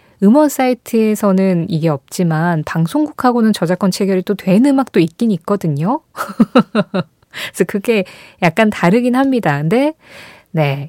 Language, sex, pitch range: Korean, female, 165-240 Hz